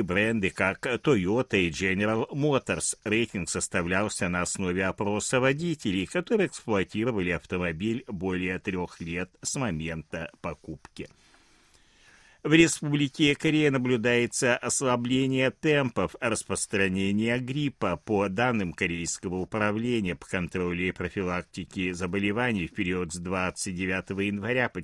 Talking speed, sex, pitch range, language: 105 wpm, male, 95-145 Hz, Russian